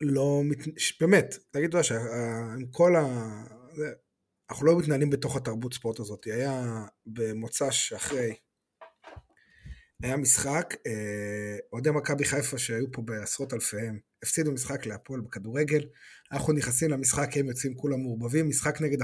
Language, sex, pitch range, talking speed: Hebrew, male, 115-145 Hz, 130 wpm